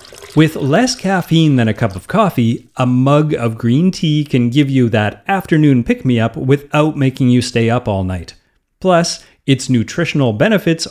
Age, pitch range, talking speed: 30-49, 115-160 Hz, 165 wpm